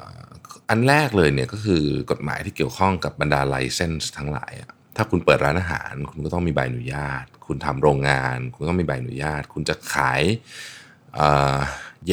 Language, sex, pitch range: Thai, male, 70-95 Hz